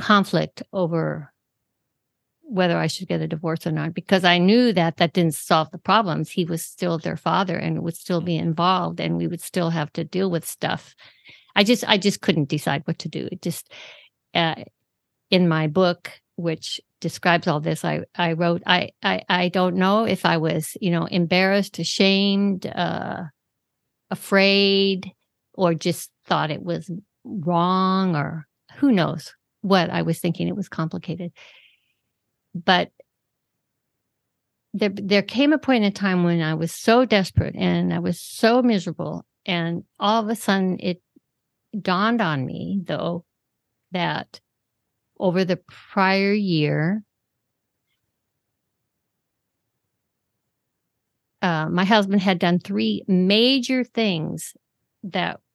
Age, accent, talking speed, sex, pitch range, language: 50-69, American, 145 wpm, female, 165-195 Hz, English